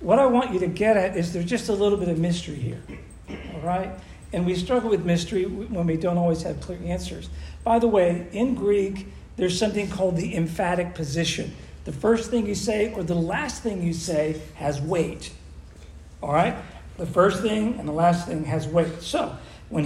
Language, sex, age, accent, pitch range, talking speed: English, male, 50-69, American, 160-200 Hz, 200 wpm